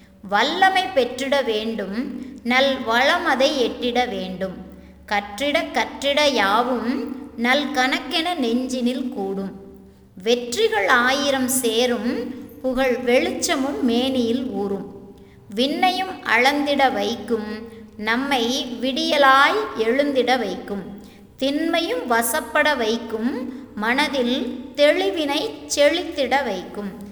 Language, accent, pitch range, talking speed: Tamil, native, 220-275 Hz, 75 wpm